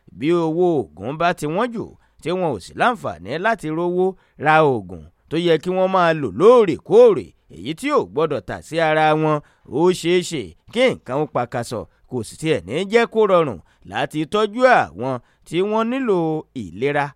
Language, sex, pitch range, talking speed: English, male, 150-210 Hz, 175 wpm